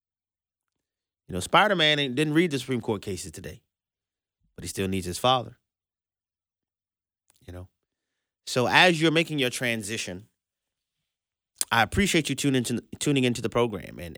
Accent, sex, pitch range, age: American, male, 95-135 Hz, 30-49